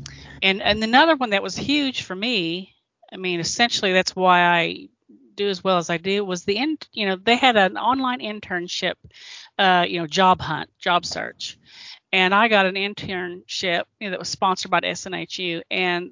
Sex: female